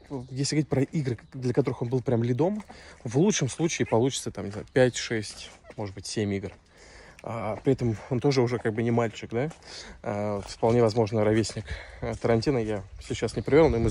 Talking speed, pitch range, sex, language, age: 175 wpm, 100-125 Hz, male, Russian, 20-39